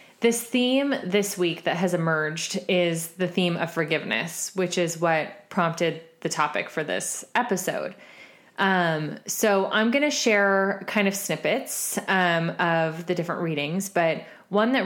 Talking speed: 155 wpm